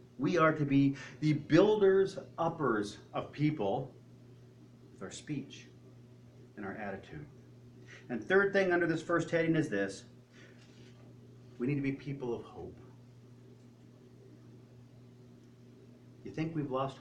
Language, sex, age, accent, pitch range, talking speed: English, male, 40-59, American, 125-180 Hz, 120 wpm